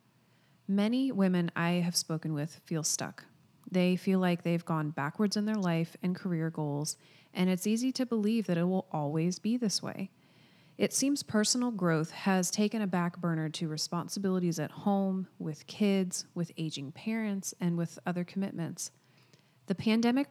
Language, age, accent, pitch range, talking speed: English, 30-49, American, 165-195 Hz, 165 wpm